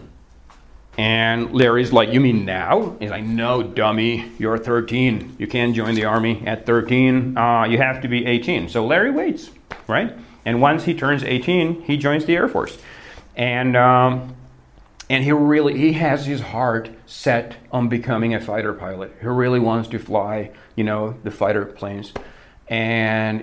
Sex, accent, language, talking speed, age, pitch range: male, American, Czech, 170 wpm, 40-59, 105-120 Hz